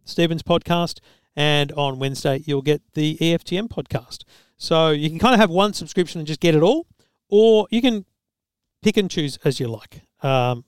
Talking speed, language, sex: 185 wpm, English, male